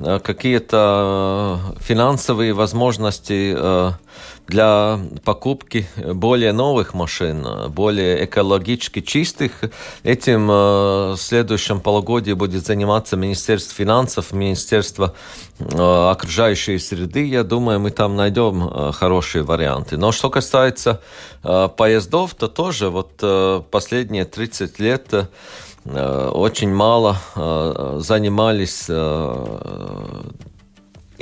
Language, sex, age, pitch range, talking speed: Russian, male, 40-59, 90-115 Hz, 80 wpm